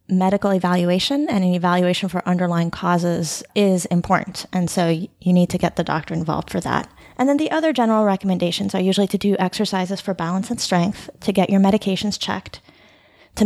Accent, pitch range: American, 175-210 Hz